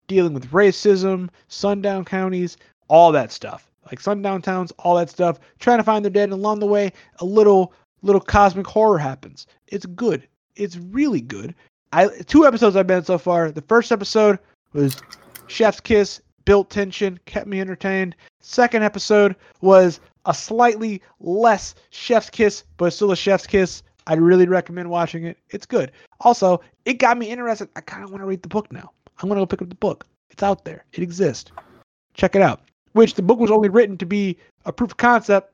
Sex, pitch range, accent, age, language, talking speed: male, 185-245 Hz, American, 30-49, English, 195 wpm